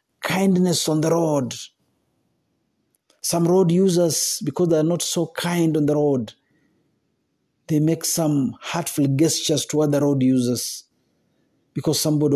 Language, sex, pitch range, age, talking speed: Swahili, male, 130-160 Hz, 50-69, 130 wpm